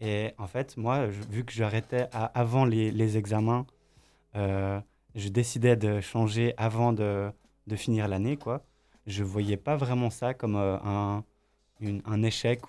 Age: 20-39